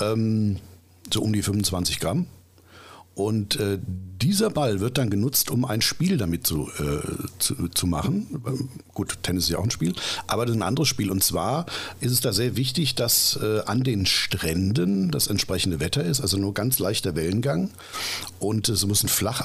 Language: German